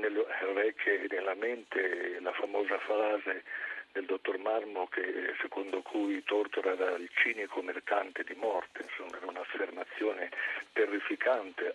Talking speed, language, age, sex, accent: 125 wpm, Italian, 50-69, male, native